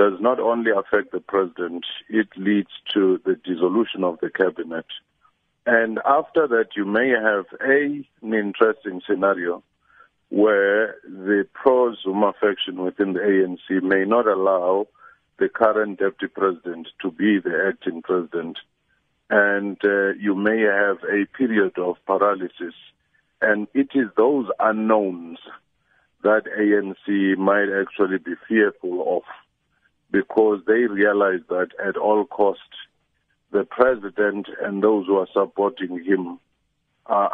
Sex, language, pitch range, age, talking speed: male, English, 95-110 Hz, 50-69, 125 wpm